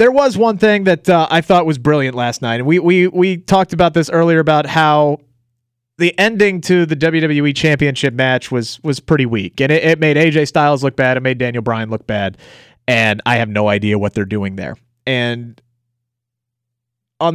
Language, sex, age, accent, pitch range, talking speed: English, male, 30-49, American, 120-175 Hz, 195 wpm